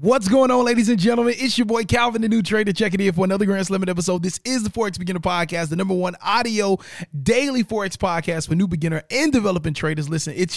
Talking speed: 240 wpm